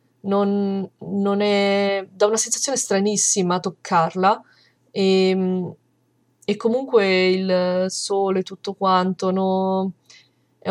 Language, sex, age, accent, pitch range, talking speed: Italian, female, 20-39, native, 175-200 Hz, 95 wpm